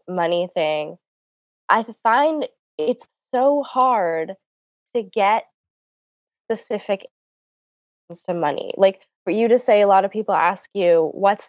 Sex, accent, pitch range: female, American, 160-210 Hz